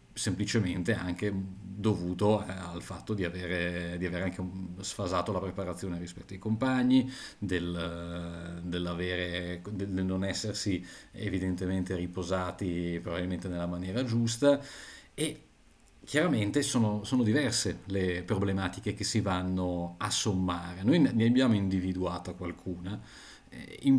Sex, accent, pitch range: male, native, 90-105 Hz